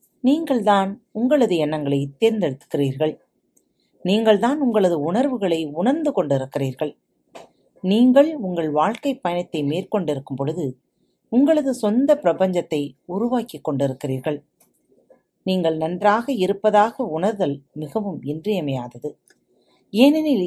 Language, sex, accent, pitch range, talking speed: Tamil, female, native, 150-235 Hz, 80 wpm